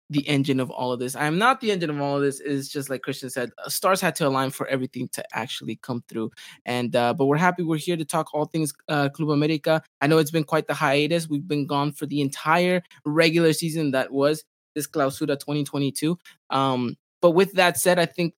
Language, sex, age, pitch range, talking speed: English, male, 20-39, 135-165 Hz, 230 wpm